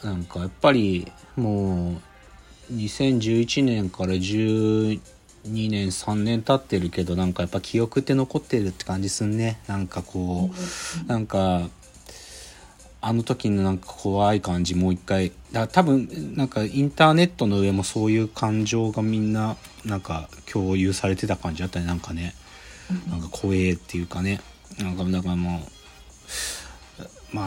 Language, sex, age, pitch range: Japanese, male, 40-59, 90-120 Hz